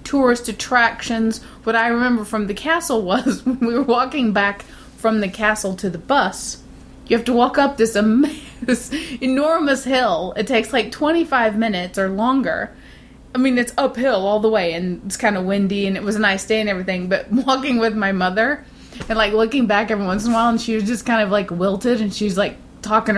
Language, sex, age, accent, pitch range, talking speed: English, female, 20-39, American, 200-245 Hz, 210 wpm